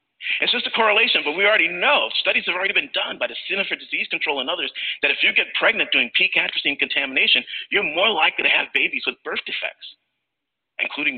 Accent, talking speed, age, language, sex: American, 210 wpm, 40-59, English, male